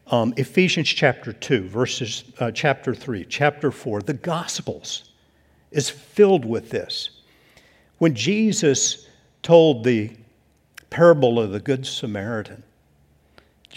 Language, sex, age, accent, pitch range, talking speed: English, male, 50-69, American, 115-150 Hz, 115 wpm